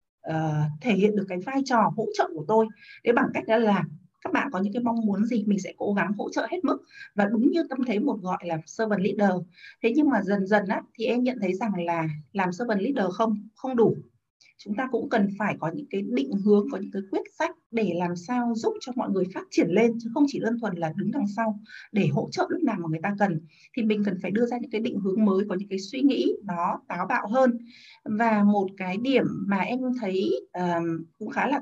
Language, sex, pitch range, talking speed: Vietnamese, female, 190-245 Hz, 250 wpm